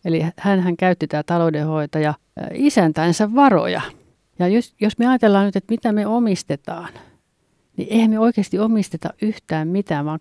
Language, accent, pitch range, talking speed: Finnish, native, 165-205 Hz, 155 wpm